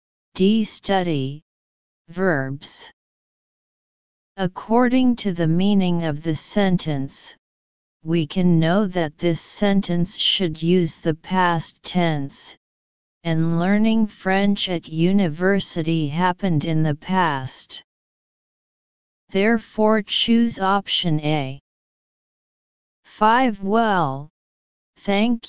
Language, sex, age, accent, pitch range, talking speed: English, female, 40-59, American, 155-195 Hz, 85 wpm